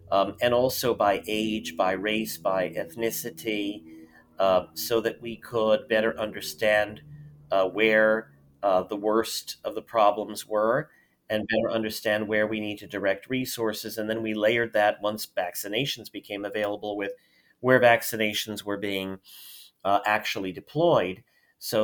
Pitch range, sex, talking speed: 100-115 Hz, male, 145 wpm